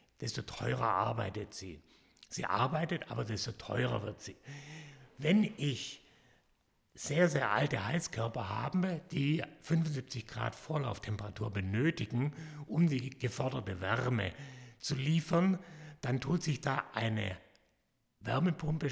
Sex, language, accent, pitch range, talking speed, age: male, German, German, 110-150 Hz, 110 wpm, 60-79